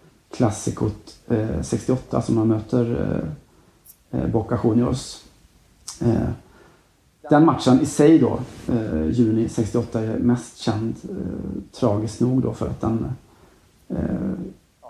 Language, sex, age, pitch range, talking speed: Swedish, male, 40-59, 110-130 Hz, 120 wpm